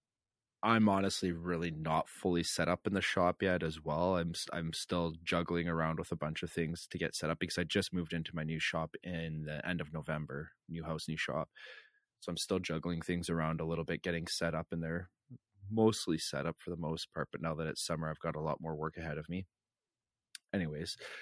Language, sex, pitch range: English, male, 80-90 Hz